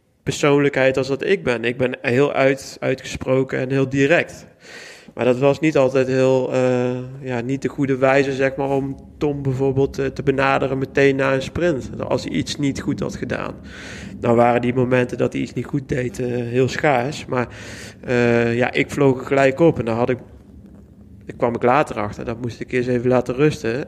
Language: Dutch